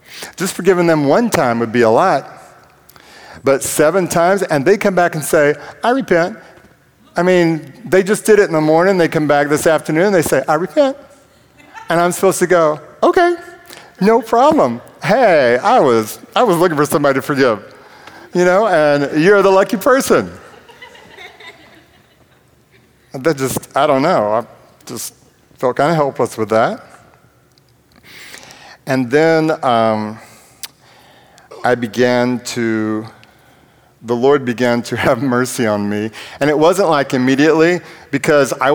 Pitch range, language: 115-165 Hz, English